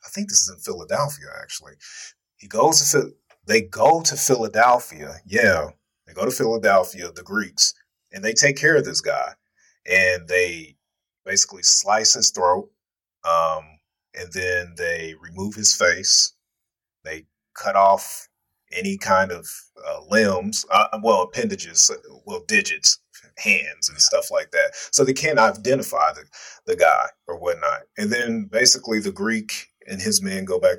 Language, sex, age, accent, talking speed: English, male, 30-49, American, 150 wpm